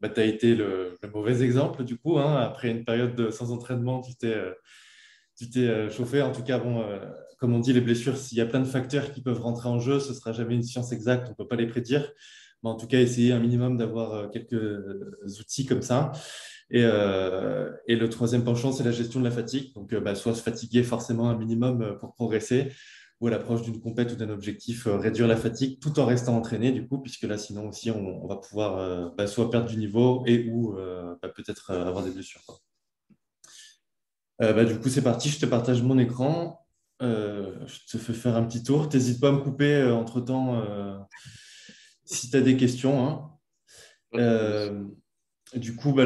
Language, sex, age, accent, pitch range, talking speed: French, male, 20-39, French, 115-130 Hz, 215 wpm